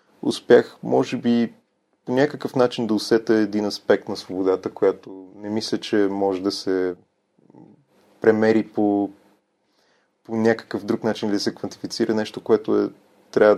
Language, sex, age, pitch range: Bulgarian, male, 30-49, 100-115 Hz